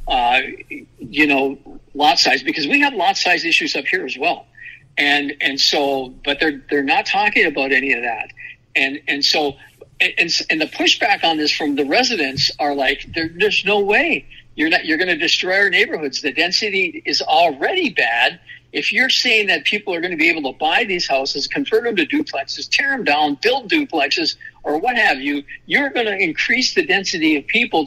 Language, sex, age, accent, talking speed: English, male, 60-79, American, 200 wpm